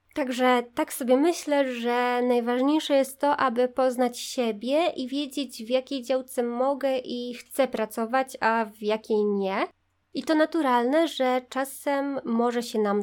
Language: Polish